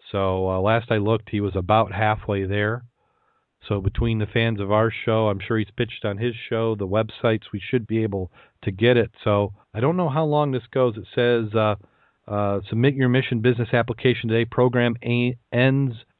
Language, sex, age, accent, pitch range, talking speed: English, male, 40-59, American, 100-120 Hz, 195 wpm